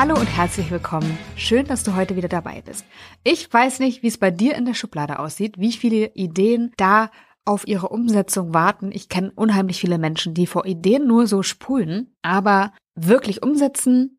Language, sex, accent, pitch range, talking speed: German, female, German, 185-230 Hz, 185 wpm